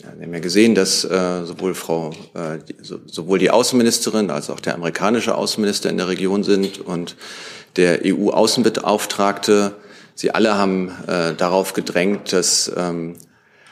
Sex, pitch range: male, 90-105 Hz